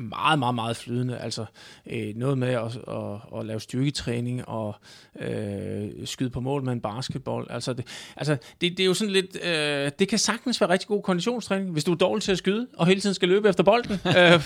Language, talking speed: Danish, 225 wpm